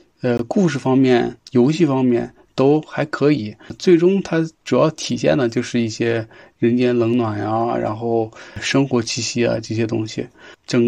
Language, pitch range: Chinese, 110-125 Hz